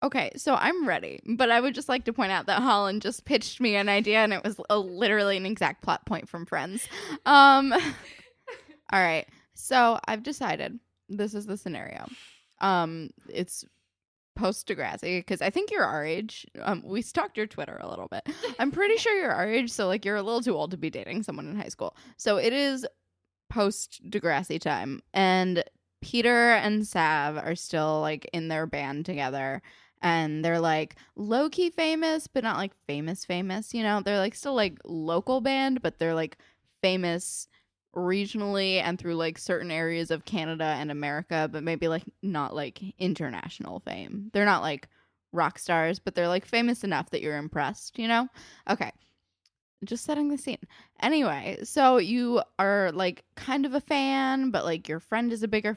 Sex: female